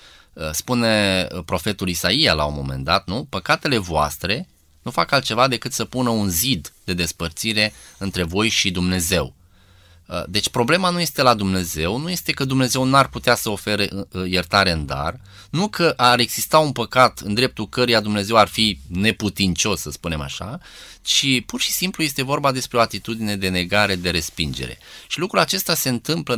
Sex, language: male, Romanian